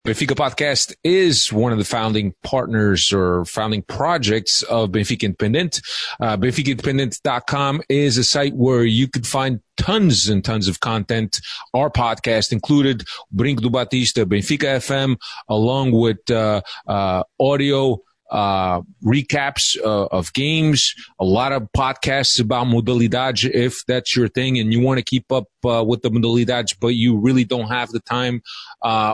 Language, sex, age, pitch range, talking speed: English, male, 30-49, 110-130 Hz, 150 wpm